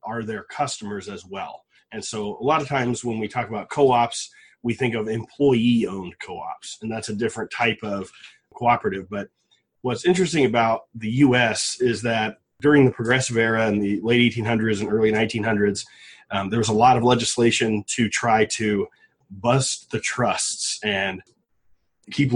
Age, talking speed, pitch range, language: 30-49, 165 wpm, 110-130 Hz, English